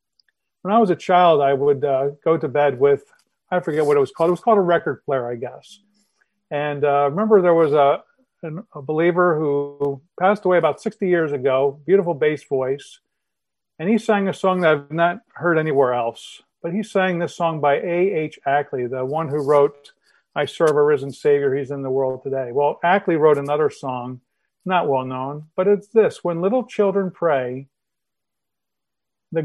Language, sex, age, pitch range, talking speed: English, male, 50-69, 145-185 Hz, 190 wpm